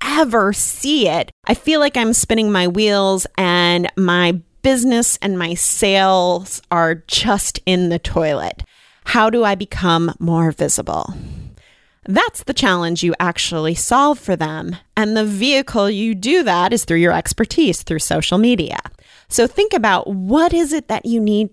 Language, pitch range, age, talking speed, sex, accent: English, 175-250 Hz, 30-49, 160 wpm, female, American